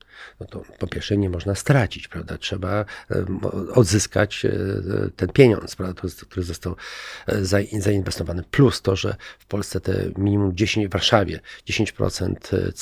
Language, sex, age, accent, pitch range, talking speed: Polish, male, 50-69, native, 95-110 Hz, 120 wpm